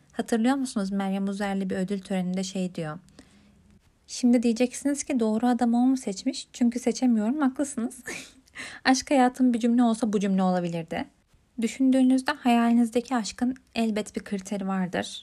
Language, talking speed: Turkish, 135 wpm